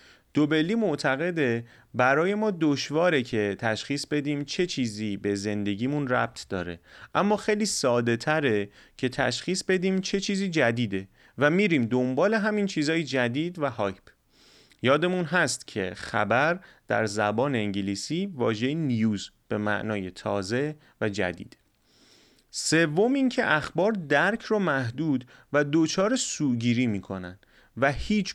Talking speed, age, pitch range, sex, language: 125 wpm, 30-49, 110-160 Hz, male, Persian